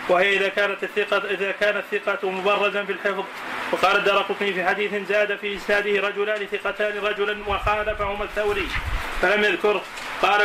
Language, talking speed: Arabic, 145 wpm